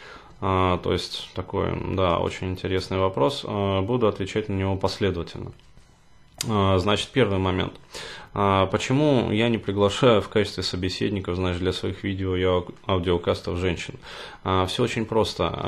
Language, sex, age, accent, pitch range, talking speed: Russian, male, 20-39, native, 90-105 Hz, 125 wpm